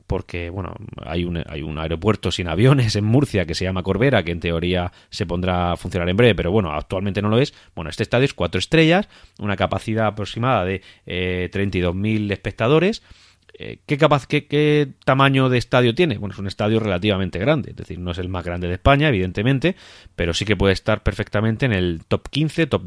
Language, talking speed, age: Spanish, 205 wpm, 30-49